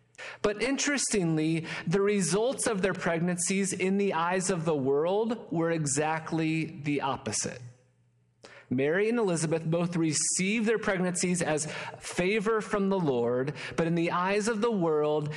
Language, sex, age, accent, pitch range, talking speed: English, male, 30-49, American, 145-195 Hz, 140 wpm